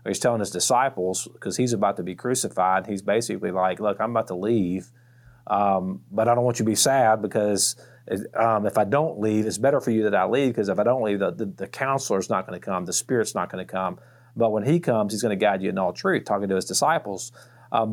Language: English